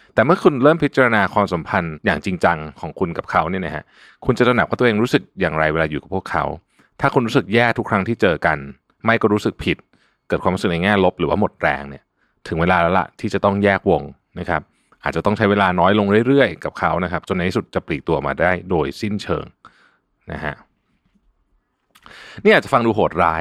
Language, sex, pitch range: Thai, male, 85-115 Hz